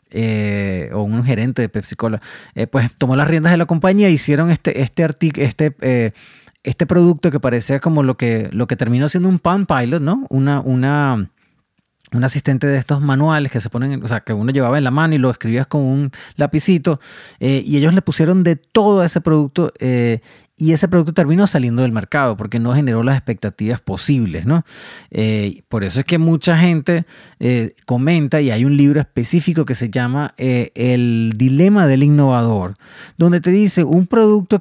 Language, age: English, 30-49